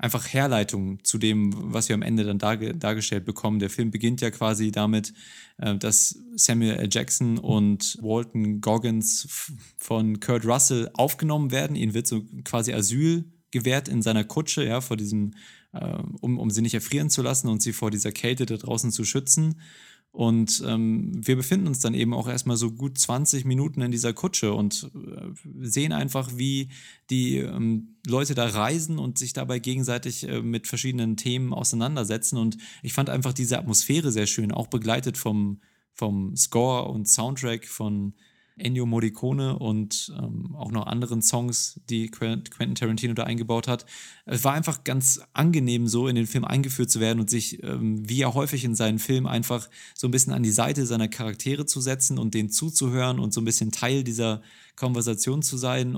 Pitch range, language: 110-130 Hz, German